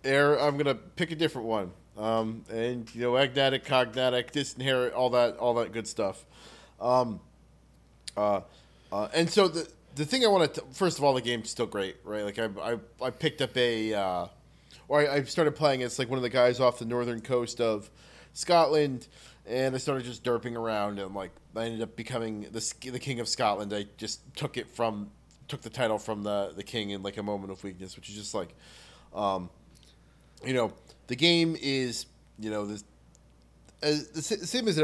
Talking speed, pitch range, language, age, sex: 205 wpm, 105-135 Hz, English, 20-39, male